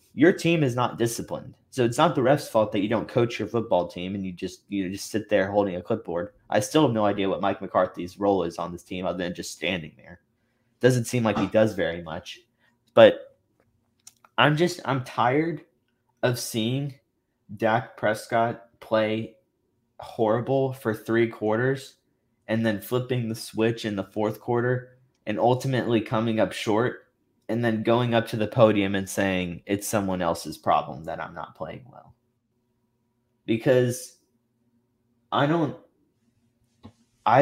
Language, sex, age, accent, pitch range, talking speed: English, male, 20-39, American, 105-125 Hz, 165 wpm